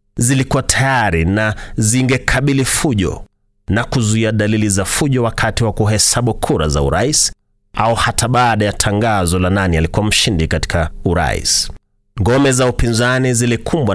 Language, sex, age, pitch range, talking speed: Swahili, male, 30-49, 95-120 Hz, 135 wpm